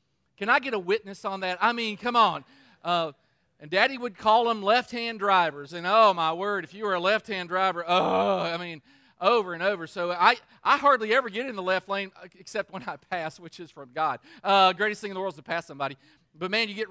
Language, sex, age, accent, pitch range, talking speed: English, male, 40-59, American, 170-220 Hz, 240 wpm